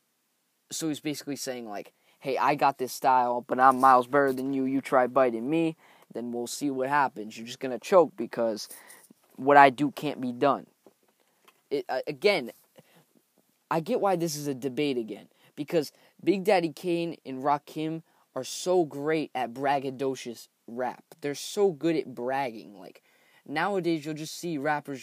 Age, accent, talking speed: 10-29, American, 170 wpm